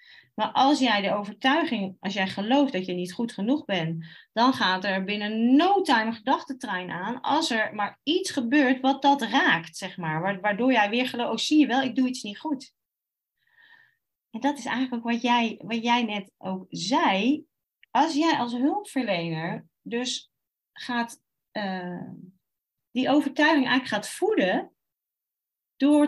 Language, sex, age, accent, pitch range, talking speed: Dutch, female, 30-49, Dutch, 195-280 Hz, 165 wpm